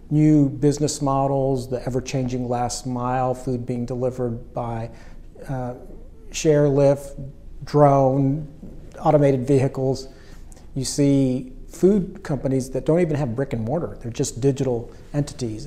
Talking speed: 125 wpm